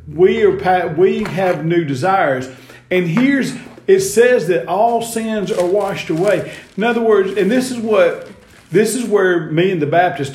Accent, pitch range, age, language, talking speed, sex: American, 95-160 Hz, 40-59, English, 175 wpm, male